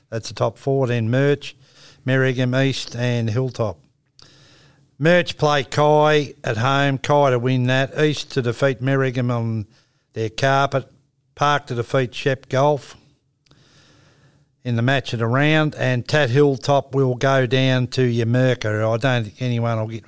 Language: English